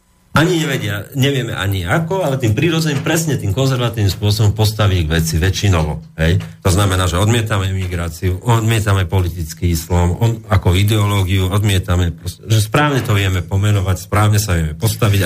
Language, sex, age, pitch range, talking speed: Slovak, male, 40-59, 90-125 Hz, 140 wpm